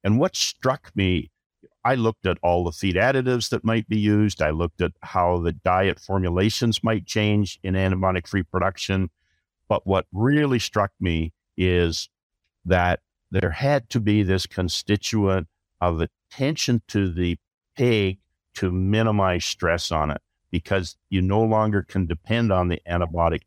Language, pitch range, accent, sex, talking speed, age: English, 85-105 Hz, American, male, 150 wpm, 60-79